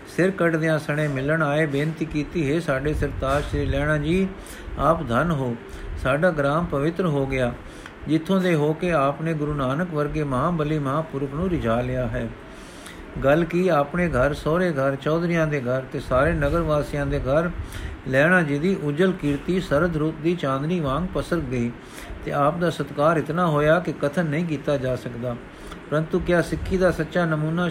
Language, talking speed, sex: Punjabi, 175 wpm, male